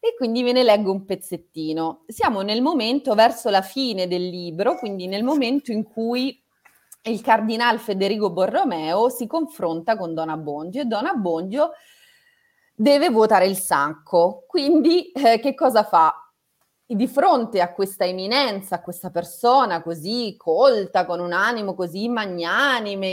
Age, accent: 30-49, native